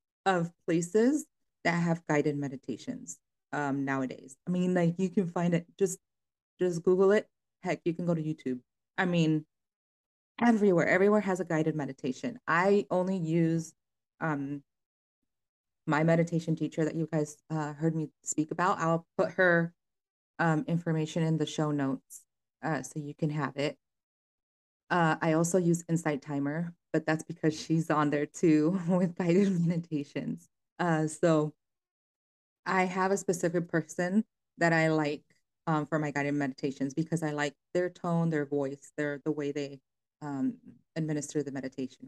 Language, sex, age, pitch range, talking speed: English, female, 20-39, 150-180 Hz, 155 wpm